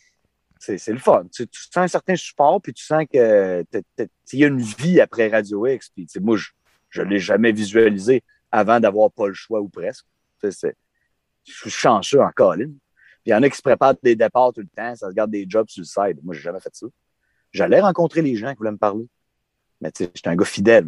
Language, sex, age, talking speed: French, male, 30-49, 225 wpm